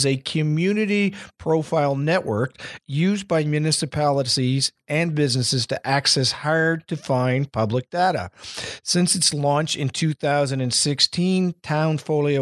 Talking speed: 110 wpm